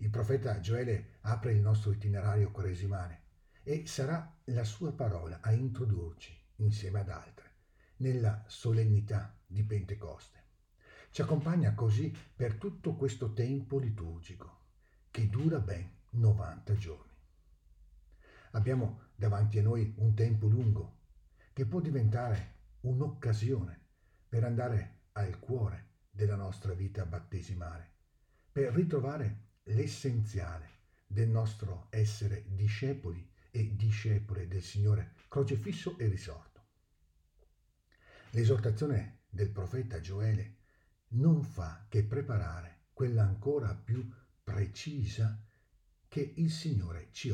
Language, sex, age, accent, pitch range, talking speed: Italian, male, 50-69, native, 95-115 Hz, 105 wpm